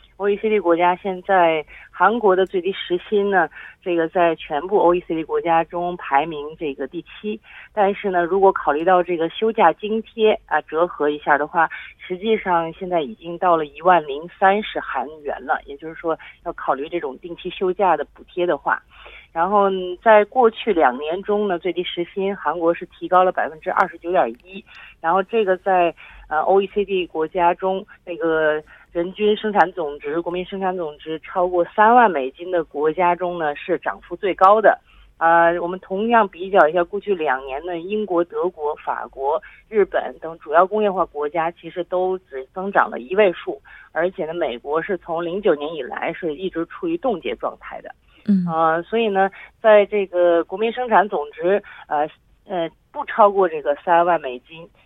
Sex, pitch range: female, 165-200 Hz